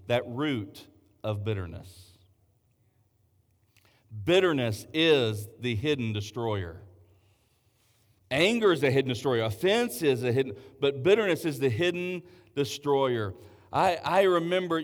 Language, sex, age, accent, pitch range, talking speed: English, male, 40-59, American, 105-145 Hz, 110 wpm